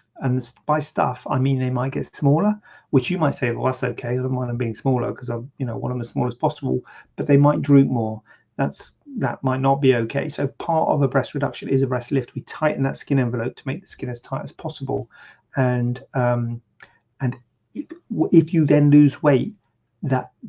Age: 30-49